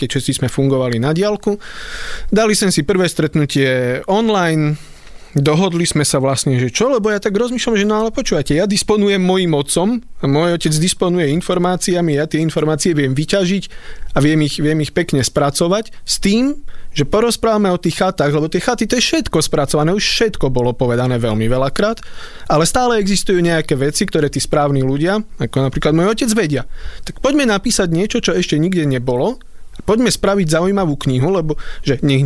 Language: Slovak